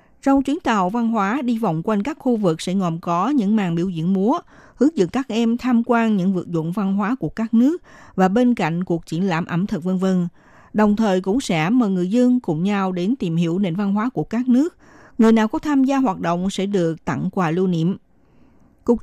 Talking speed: 235 wpm